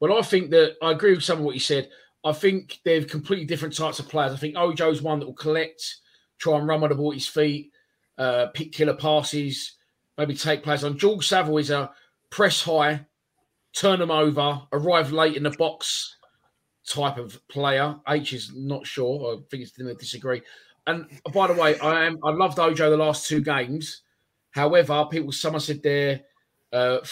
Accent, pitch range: British, 145-165 Hz